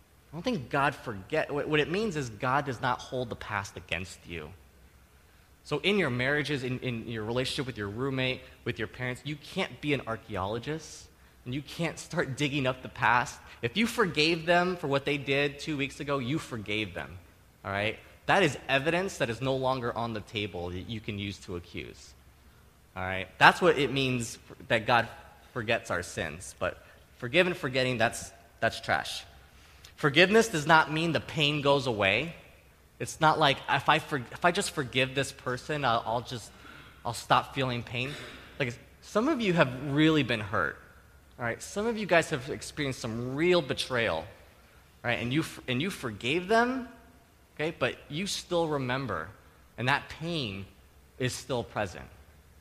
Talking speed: 180 wpm